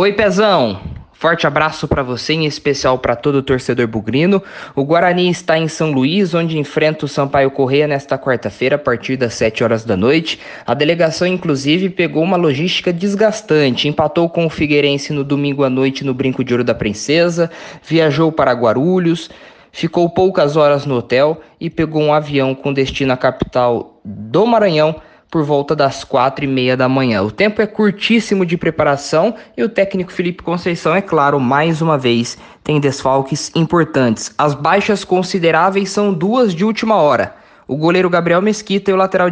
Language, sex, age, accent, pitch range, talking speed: Portuguese, male, 20-39, Brazilian, 140-180 Hz, 175 wpm